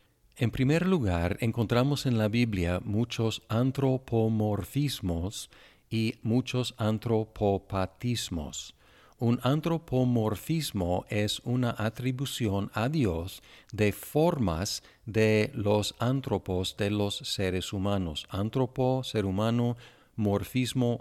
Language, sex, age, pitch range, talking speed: Spanish, male, 50-69, 100-120 Hz, 90 wpm